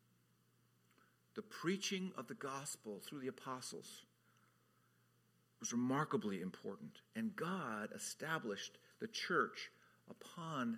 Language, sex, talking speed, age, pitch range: English, male, 95 wpm, 50-69, 120-185 Hz